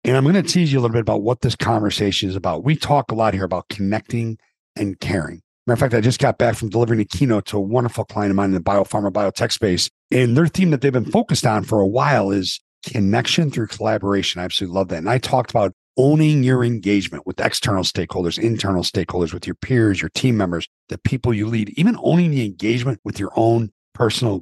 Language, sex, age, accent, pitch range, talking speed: English, male, 50-69, American, 100-135 Hz, 235 wpm